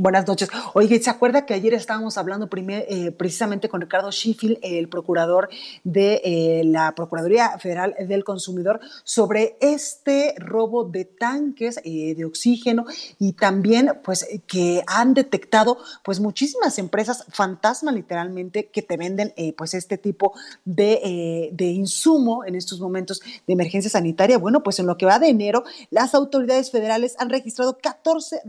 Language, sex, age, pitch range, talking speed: Spanish, female, 30-49, 195-260 Hz, 155 wpm